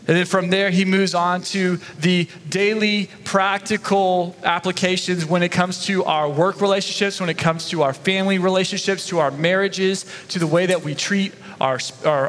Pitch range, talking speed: 150-200 Hz, 180 wpm